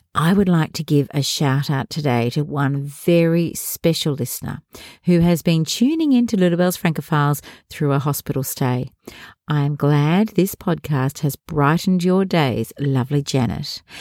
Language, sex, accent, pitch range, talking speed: English, female, Australian, 140-190 Hz, 160 wpm